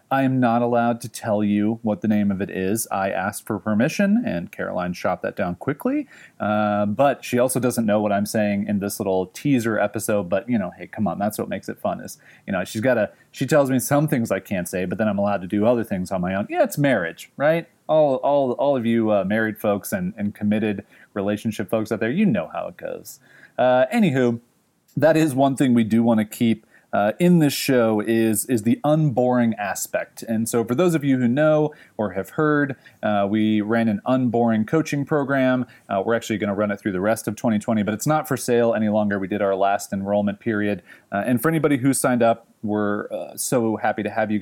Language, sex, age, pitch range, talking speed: English, male, 30-49, 105-130 Hz, 225 wpm